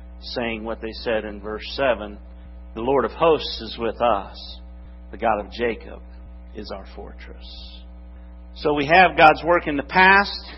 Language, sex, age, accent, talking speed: English, male, 50-69, American, 165 wpm